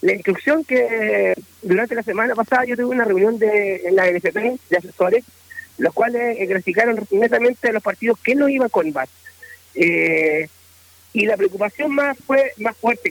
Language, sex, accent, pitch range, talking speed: Spanish, male, Argentinian, 180-240 Hz, 175 wpm